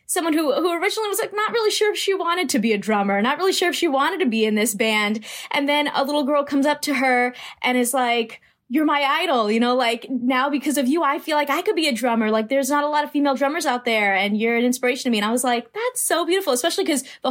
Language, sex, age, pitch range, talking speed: English, female, 20-39, 220-280 Hz, 290 wpm